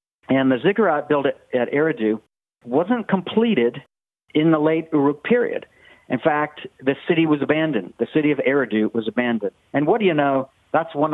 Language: English